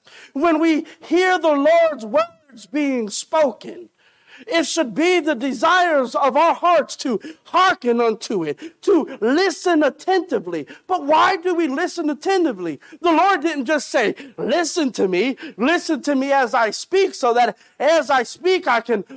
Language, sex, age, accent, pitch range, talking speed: English, male, 50-69, American, 255-335 Hz, 155 wpm